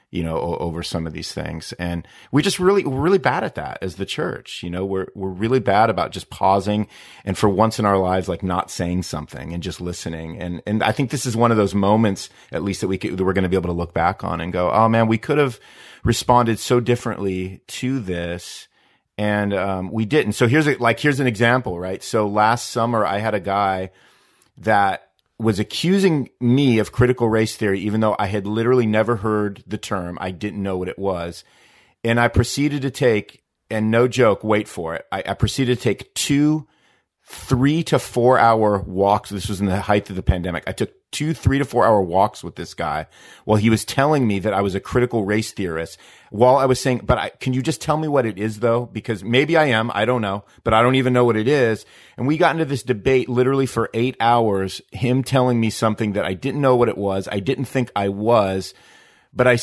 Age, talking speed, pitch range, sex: 40-59, 230 wpm, 95-125 Hz, male